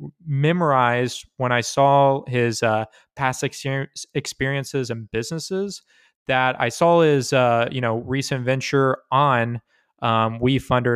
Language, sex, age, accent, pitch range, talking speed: English, male, 20-39, American, 120-145 Hz, 125 wpm